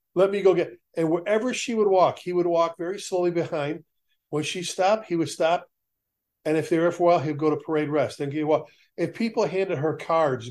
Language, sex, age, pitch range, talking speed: English, male, 40-59, 155-190 Hz, 230 wpm